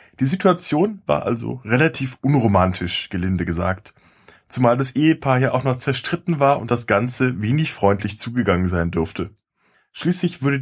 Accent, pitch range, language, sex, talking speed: German, 105-150 Hz, German, male, 145 wpm